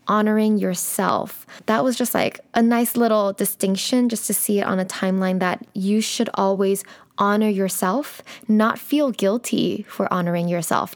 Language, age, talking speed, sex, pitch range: English, 10-29, 160 wpm, female, 190-240 Hz